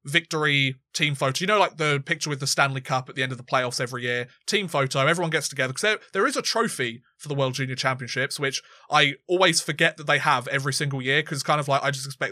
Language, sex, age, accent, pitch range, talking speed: English, male, 20-39, British, 135-180 Hz, 260 wpm